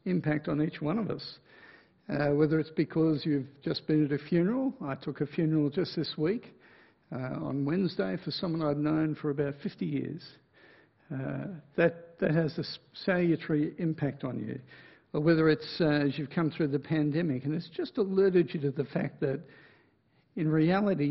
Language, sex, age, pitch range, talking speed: English, male, 60-79, 145-185 Hz, 180 wpm